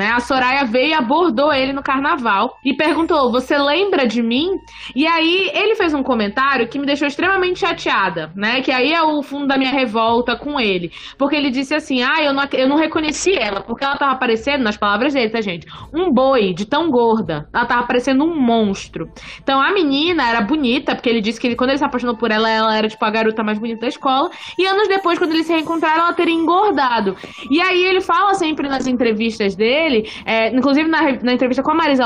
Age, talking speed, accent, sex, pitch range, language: 20-39, 220 wpm, Brazilian, female, 240-315 Hz, Portuguese